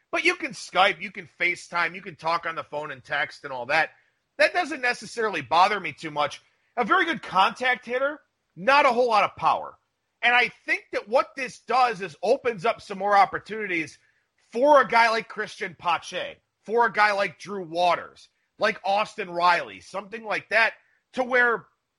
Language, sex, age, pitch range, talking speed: English, male, 40-59, 175-245 Hz, 190 wpm